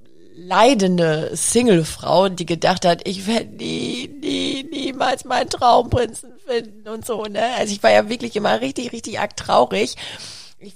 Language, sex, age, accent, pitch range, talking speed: German, female, 30-49, German, 170-225 Hz, 150 wpm